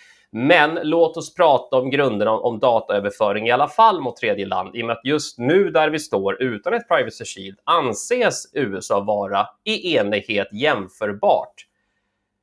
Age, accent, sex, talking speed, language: 30-49, native, male, 160 wpm, Swedish